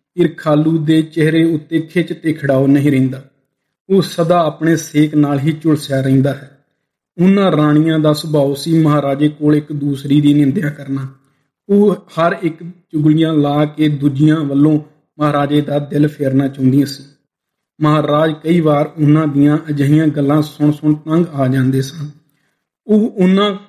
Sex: male